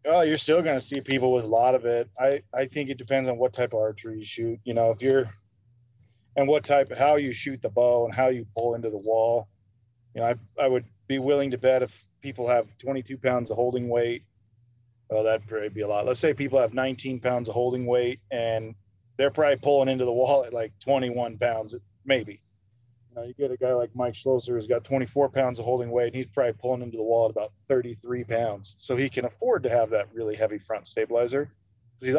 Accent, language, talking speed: American, English, 240 wpm